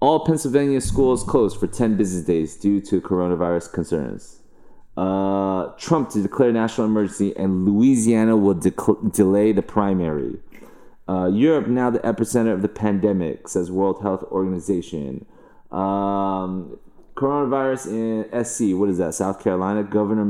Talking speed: 140 wpm